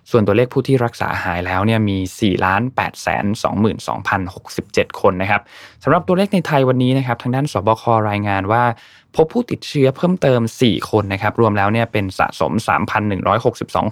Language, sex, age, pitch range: Thai, male, 20-39, 100-130 Hz